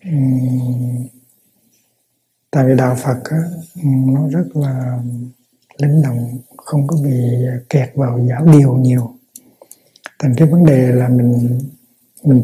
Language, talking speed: Vietnamese, 120 wpm